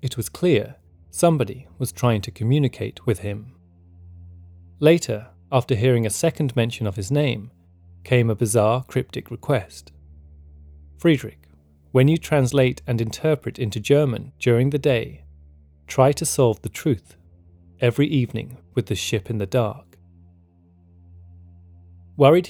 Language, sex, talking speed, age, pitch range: English, male, 130 wpm, 30-49, 95-135 Hz